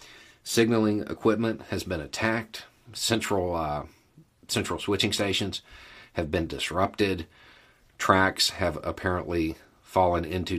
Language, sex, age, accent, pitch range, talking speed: English, male, 40-59, American, 80-100 Hz, 100 wpm